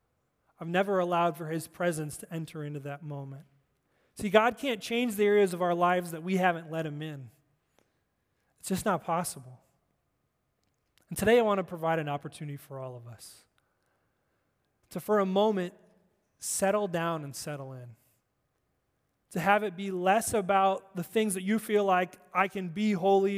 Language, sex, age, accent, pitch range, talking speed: English, male, 20-39, American, 155-195 Hz, 170 wpm